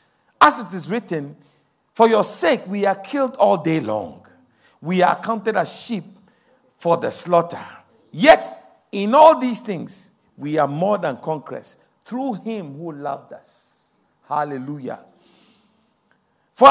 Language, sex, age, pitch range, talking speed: English, male, 50-69, 155-230 Hz, 135 wpm